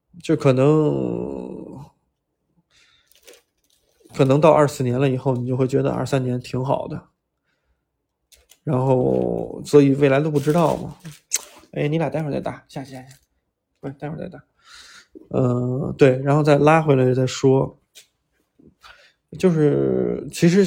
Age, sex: 20-39, male